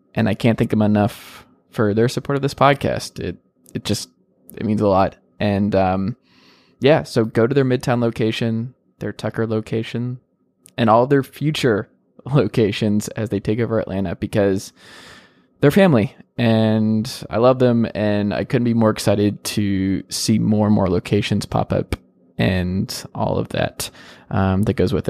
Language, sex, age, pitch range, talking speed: English, male, 20-39, 100-120 Hz, 165 wpm